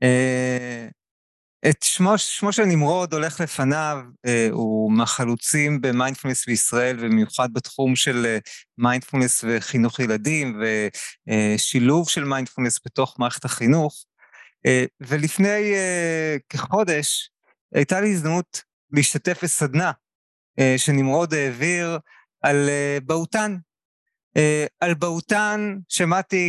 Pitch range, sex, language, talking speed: 130-170 Hz, male, Hebrew, 80 wpm